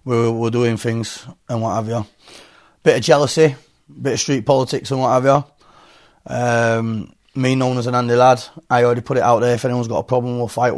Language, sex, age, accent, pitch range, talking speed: English, male, 20-39, British, 115-130 Hz, 215 wpm